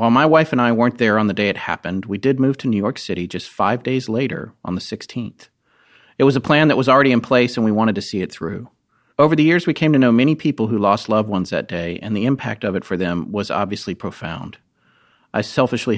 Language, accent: English, American